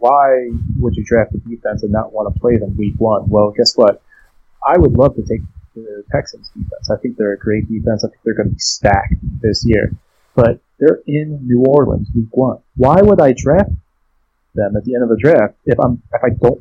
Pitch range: 105-130 Hz